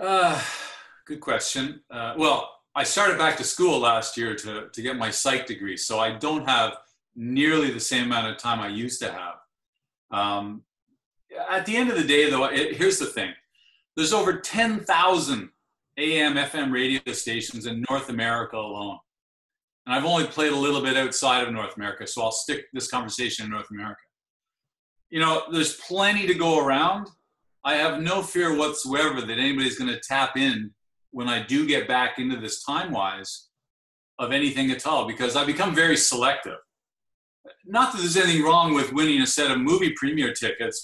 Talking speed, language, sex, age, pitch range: 180 wpm, English, male, 40-59, 120-165 Hz